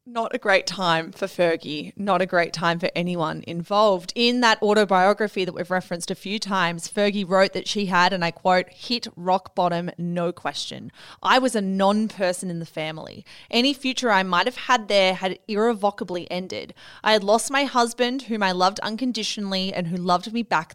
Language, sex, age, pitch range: English, female, 20-39, 180-225 Hz